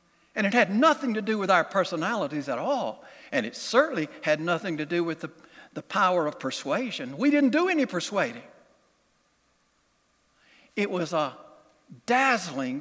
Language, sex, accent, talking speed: English, male, American, 155 wpm